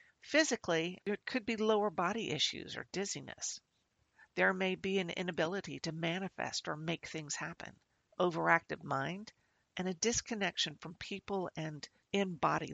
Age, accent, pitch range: 50-69, American, 150-190 Hz